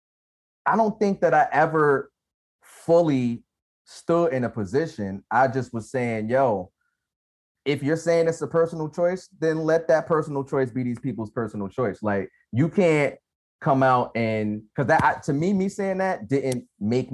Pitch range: 105-135 Hz